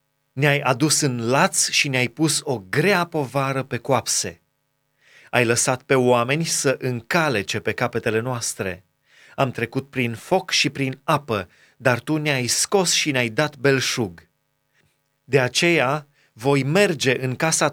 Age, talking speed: 30-49, 140 wpm